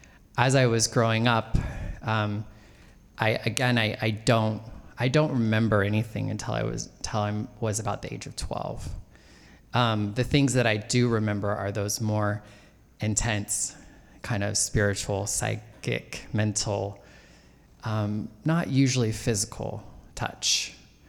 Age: 20-39